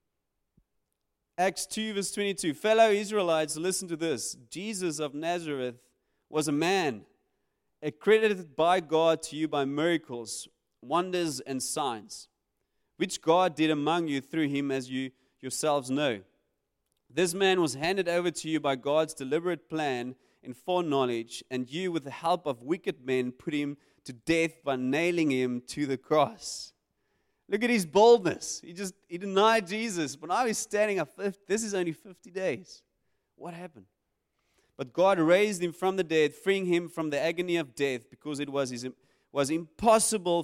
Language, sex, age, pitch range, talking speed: English, male, 30-49, 135-180 Hz, 160 wpm